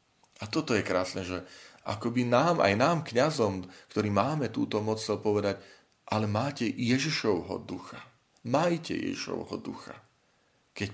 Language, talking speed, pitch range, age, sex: Slovak, 125 wpm, 95-110 Hz, 40-59, male